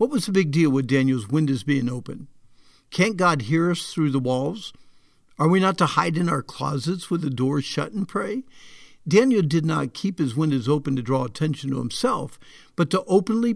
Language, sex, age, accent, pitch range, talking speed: English, male, 60-79, American, 140-185 Hz, 205 wpm